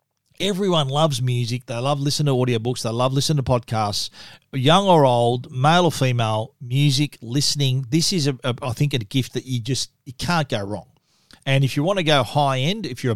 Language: English